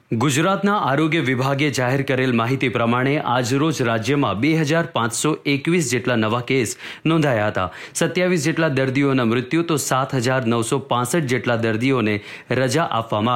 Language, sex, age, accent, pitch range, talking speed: Gujarati, male, 30-49, native, 120-160 Hz, 110 wpm